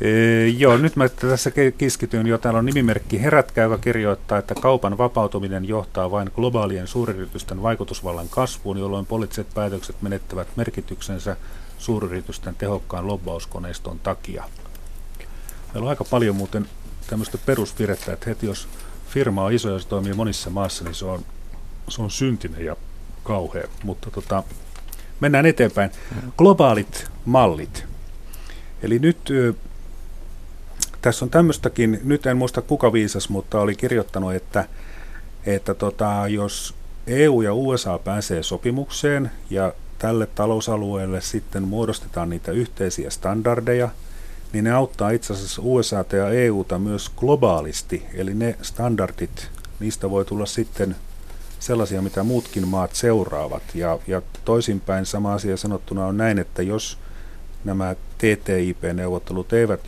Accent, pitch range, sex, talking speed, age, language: native, 90-115 Hz, male, 130 wpm, 40-59, Finnish